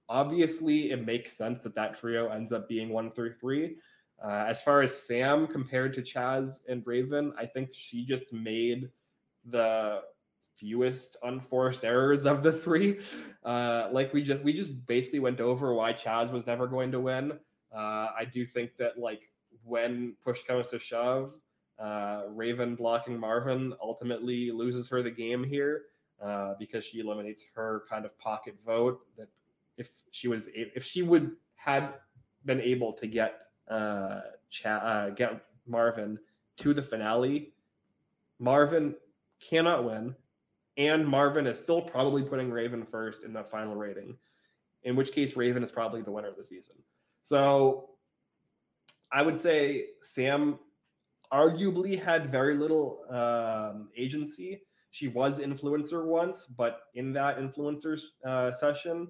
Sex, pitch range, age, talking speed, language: male, 115-140 Hz, 20-39, 150 wpm, English